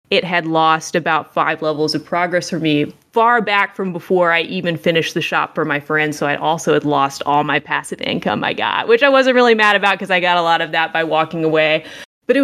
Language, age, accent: English, 20-39, American